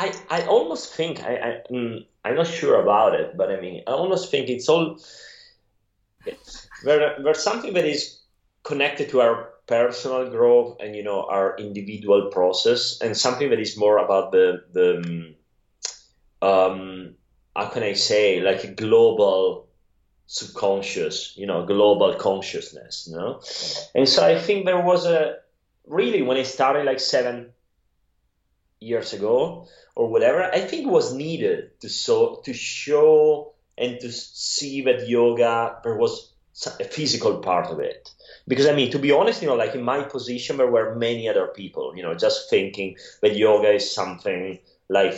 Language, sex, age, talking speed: English, male, 30-49, 160 wpm